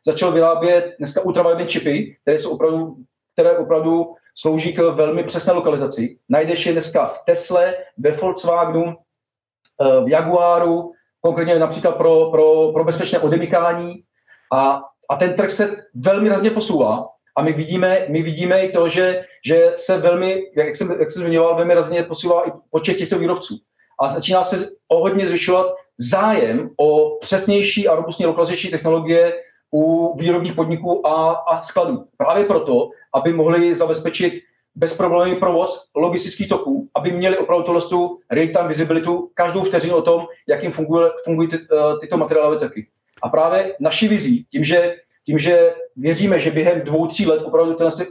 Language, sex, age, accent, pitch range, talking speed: Czech, male, 40-59, native, 160-185 Hz, 150 wpm